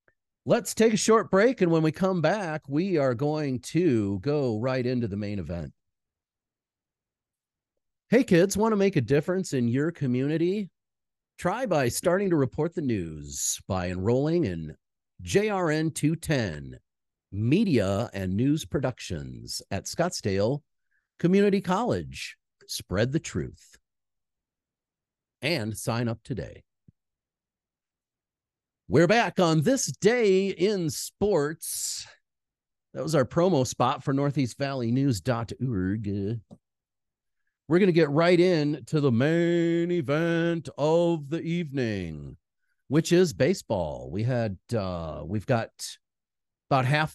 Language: English